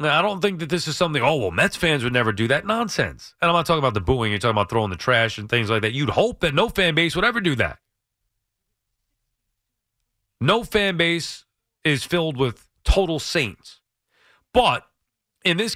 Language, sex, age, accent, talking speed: English, male, 40-59, American, 205 wpm